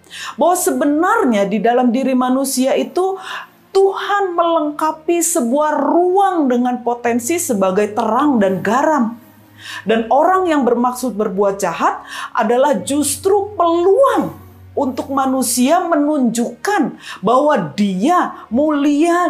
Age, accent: 40-59, native